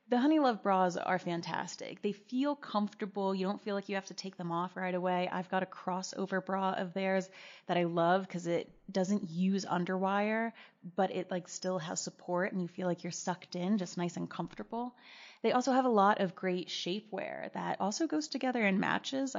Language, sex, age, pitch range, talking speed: English, female, 20-39, 180-220 Hz, 205 wpm